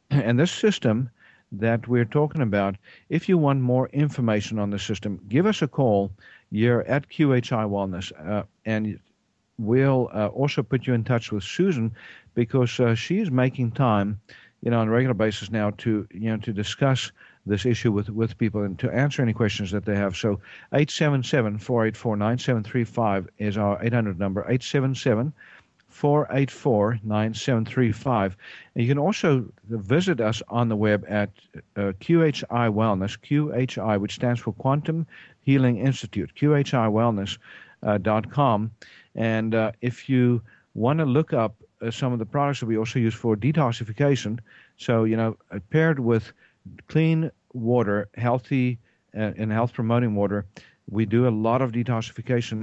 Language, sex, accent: English, male, American